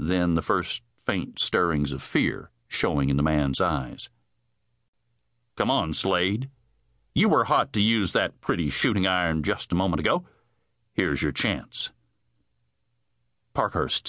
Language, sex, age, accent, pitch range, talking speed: English, male, 50-69, American, 80-115 Hz, 135 wpm